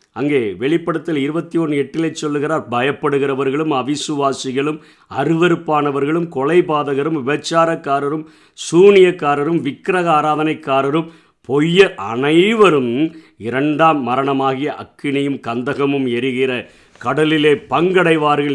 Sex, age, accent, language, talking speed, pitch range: male, 50-69, native, Tamil, 70 wpm, 125-160 Hz